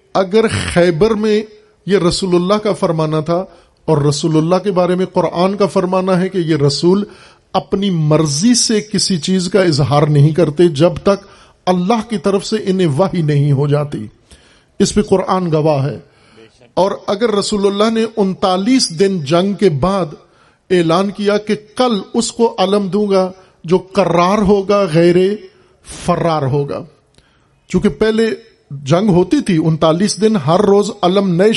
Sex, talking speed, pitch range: male, 160 wpm, 165-200 Hz